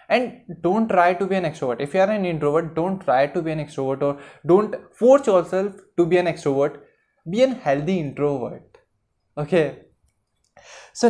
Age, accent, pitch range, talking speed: 20-39, native, 145-190 Hz, 175 wpm